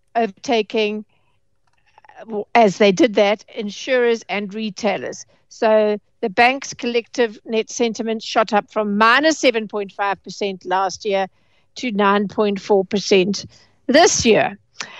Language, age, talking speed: English, 60-79, 100 wpm